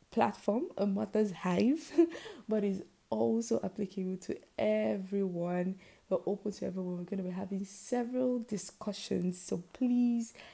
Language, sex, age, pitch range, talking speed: English, female, 20-39, 180-215 Hz, 130 wpm